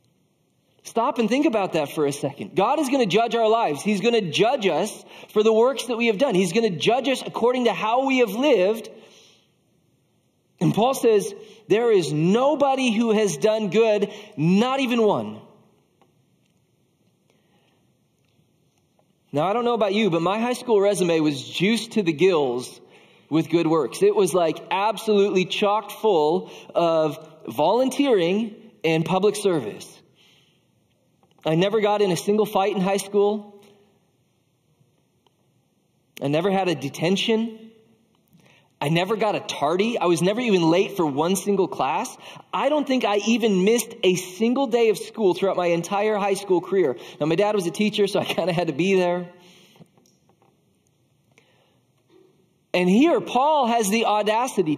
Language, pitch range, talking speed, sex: English, 180-230 Hz, 160 wpm, male